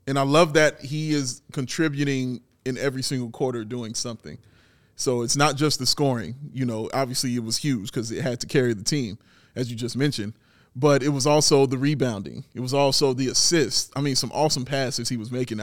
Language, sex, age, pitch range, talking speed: English, male, 30-49, 130-170 Hz, 210 wpm